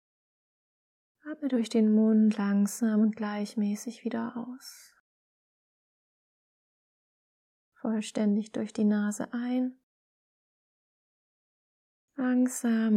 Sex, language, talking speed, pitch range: female, German, 70 wpm, 215-250 Hz